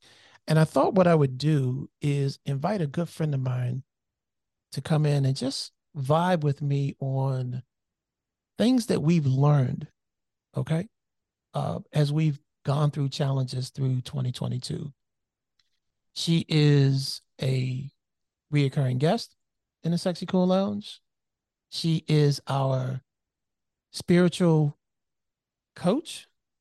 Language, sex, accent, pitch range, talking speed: English, male, American, 130-155 Hz, 115 wpm